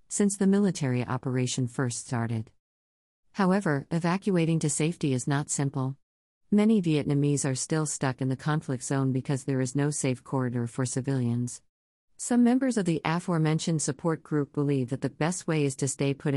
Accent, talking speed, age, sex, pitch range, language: American, 170 wpm, 50-69, female, 130-160 Hz, English